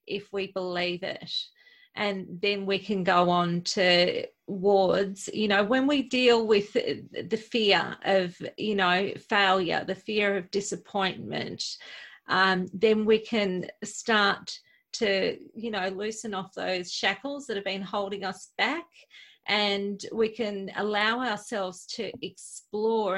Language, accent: English, Australian